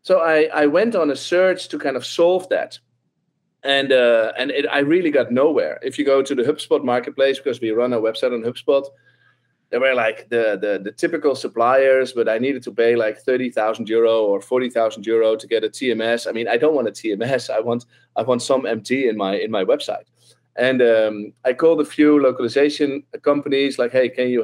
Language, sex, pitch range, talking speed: English, male, 120-170 Hz, 220 wpm